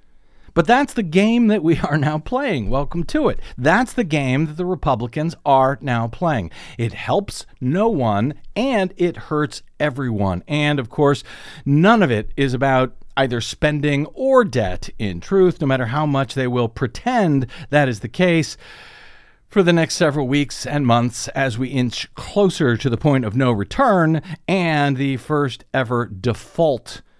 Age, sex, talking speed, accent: 50-69, male, 170 wpm, American